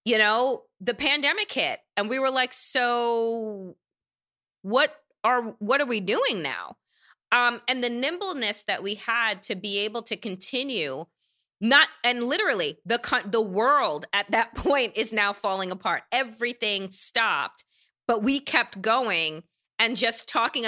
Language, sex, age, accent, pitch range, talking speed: English, female, 30-49, American, 215-290 Hz, 150 wpm